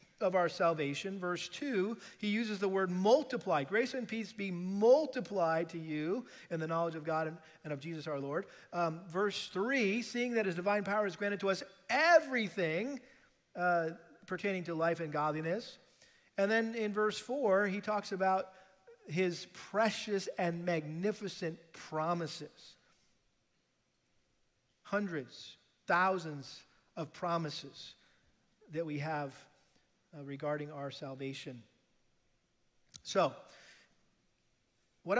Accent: American